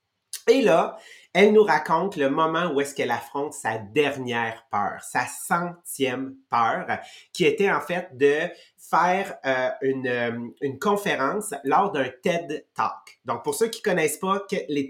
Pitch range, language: 140-180 Hz, English